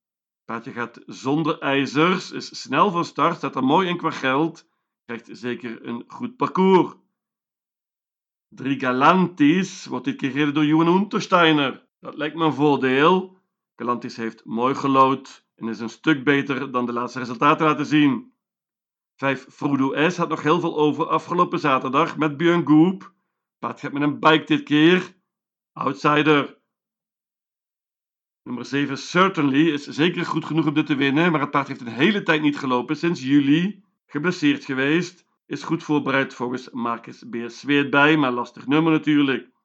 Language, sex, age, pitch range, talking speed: Dutch, male, 50-69, 130-165 Hz, 155 wpm